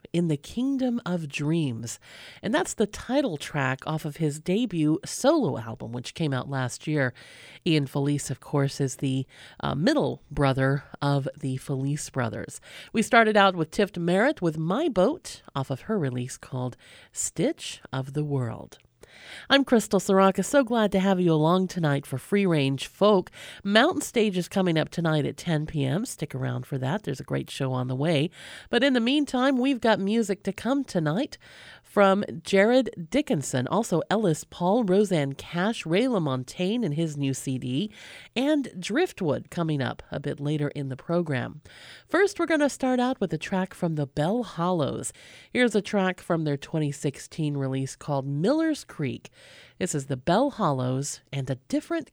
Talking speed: 175 wpm